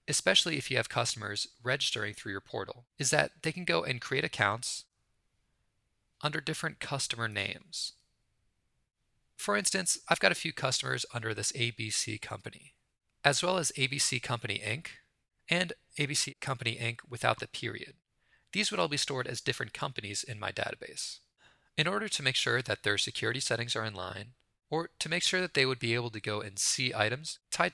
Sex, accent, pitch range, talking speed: male, American, 110-140 Hz, 180 wpm